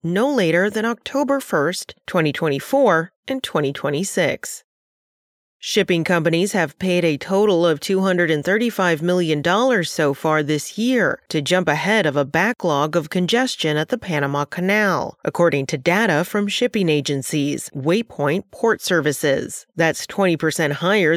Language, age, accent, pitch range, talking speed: English, 30-49, American, 160-200 Hz, 130 wpm